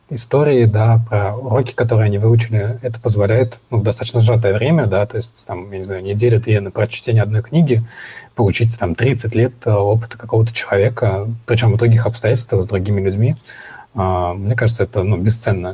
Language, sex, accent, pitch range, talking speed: Russian, male, native, 100-120 Hz, 170 wpm